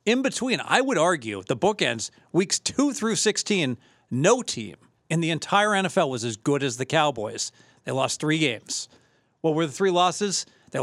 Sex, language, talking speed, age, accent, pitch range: male, English, 185 wpm, 40-59, American, 135-175 Hz